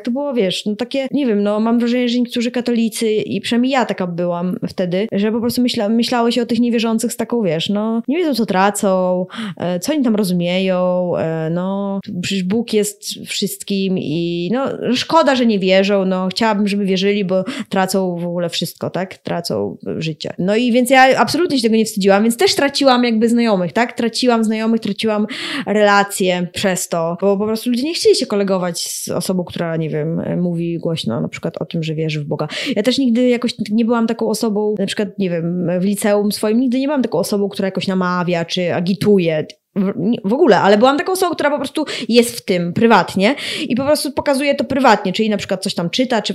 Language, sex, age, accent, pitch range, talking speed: Polish, female, 20-39, native, 185-240 Hz, 205 wpm